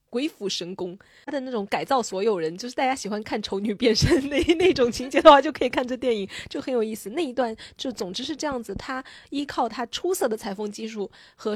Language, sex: Chinese, female